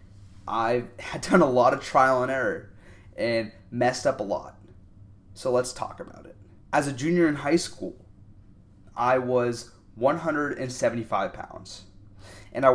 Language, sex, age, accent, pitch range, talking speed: English, male, 20-39, American, 100-130 Hz, 145 wpm